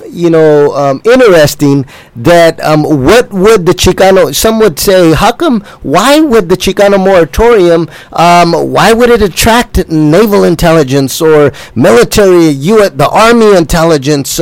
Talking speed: 140 wpm